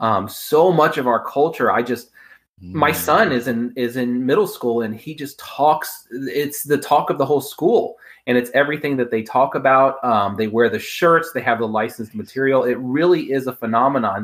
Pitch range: 115-145 Hz